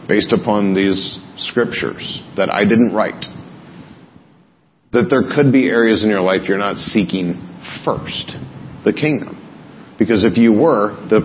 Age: 40-59